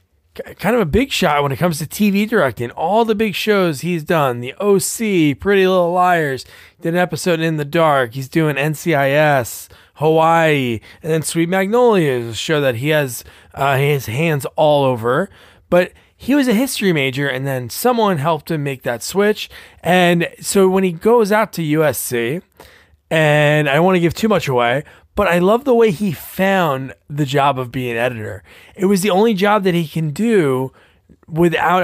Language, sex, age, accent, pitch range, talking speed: English, male, 20-39, American, 135-190 Hz, 190 wpm